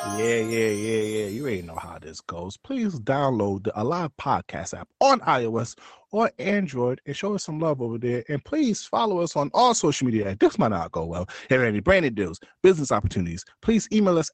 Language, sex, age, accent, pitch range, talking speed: English, male, 30-49, American, 115-190 Hz, 210 wpm